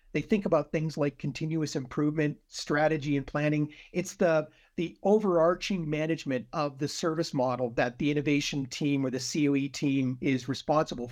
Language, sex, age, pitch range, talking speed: English, male, 50-69, 140-165 Hz, 155 wpm